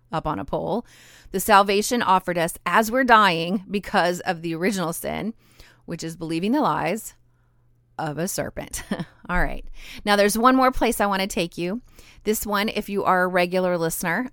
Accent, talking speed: American, 185 wpm